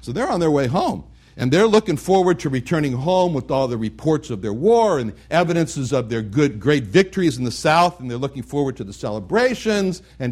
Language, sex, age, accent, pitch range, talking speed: English, male, 60-79, American, 125-180 Hz, 225 wpm